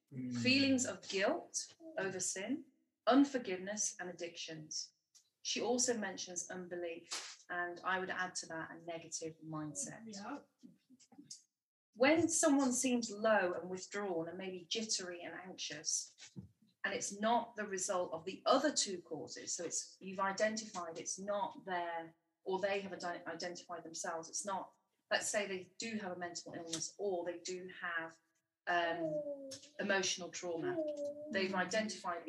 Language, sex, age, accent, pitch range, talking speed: English, female, 30-49, British, 165-215 Hz, 135 wpm